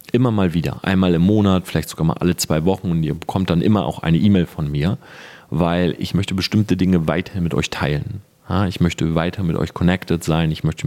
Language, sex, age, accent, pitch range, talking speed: German, male, 30-49, German, 85-100 Hz, 220 wpm